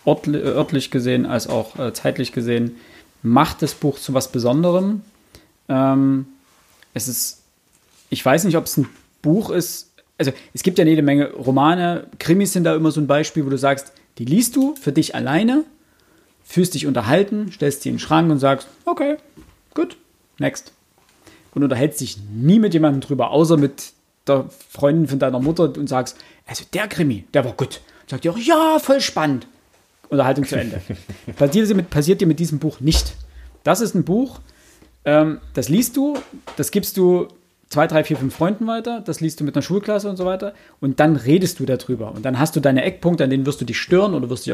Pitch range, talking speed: 135-175 Hz, 195 wpm